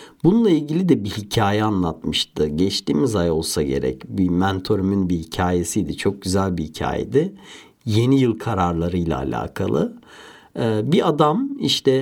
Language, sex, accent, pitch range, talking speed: Turkish, male, native, 90-140 Hz, 130 wpm